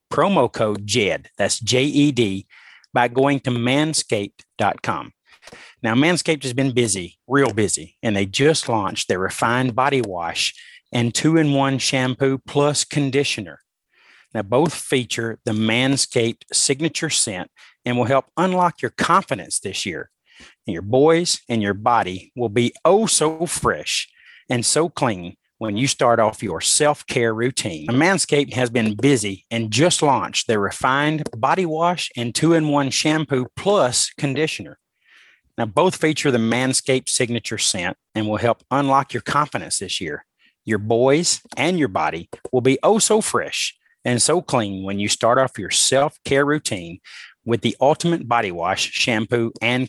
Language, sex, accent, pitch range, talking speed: English, male, American, 115-145 Hz, 150 wpm